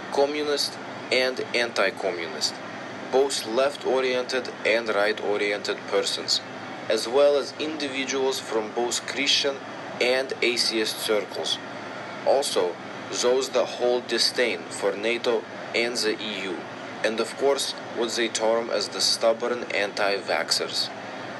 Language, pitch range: English, 115-135 Hz